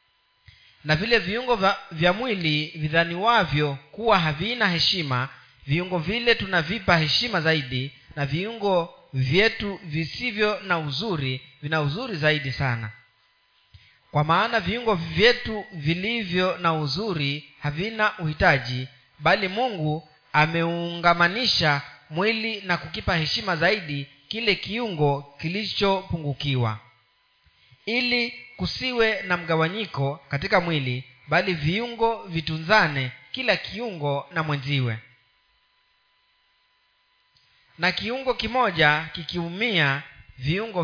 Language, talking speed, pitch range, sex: Swahili, 95 wpm, 145-210 Hz, male